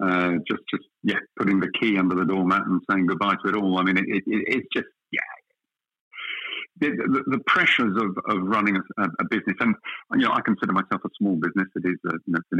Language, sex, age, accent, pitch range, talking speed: English, male, 50-69, British, 95-105 Hz, 235 wpm